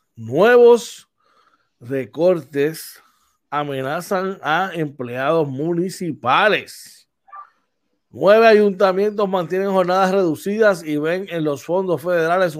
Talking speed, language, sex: 80 wpm, Spanish, male